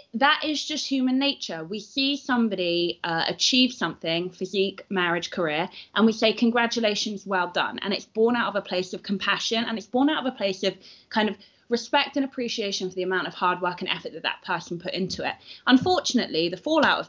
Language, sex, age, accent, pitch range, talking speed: English, female, 20-39, British, 180-255 Hz, 210 wpm